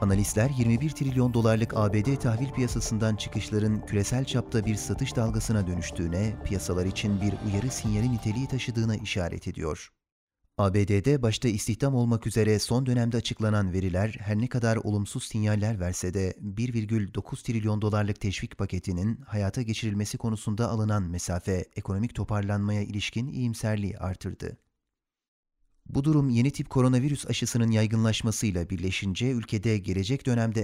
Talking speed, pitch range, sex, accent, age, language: 125 wpm, 100-120 Hz, male, native, 40-59, Turkish